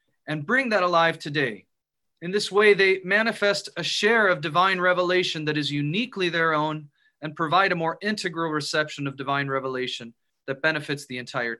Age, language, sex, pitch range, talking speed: 30-49, English, male, 150-190 Hz, 170 wpm